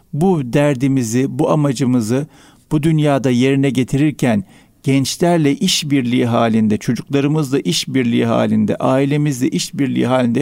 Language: Turkish